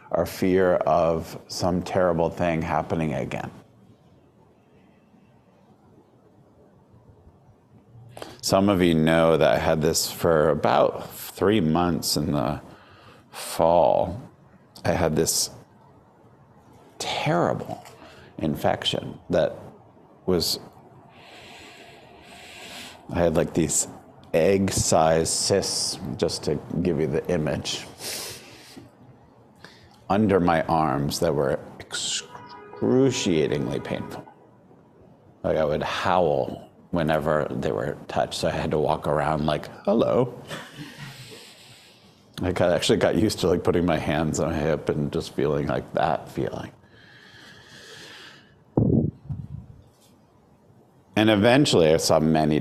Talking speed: 105 wpm